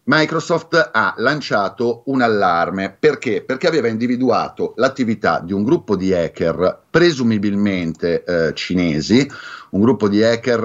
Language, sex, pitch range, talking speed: Italian, male, 100-125 Hz, 125 wpm